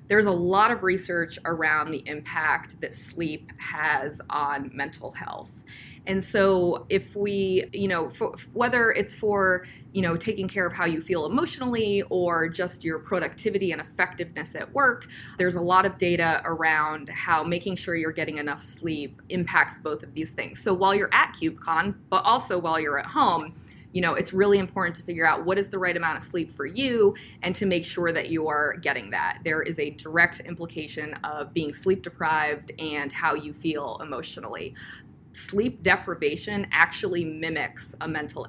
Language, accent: English, American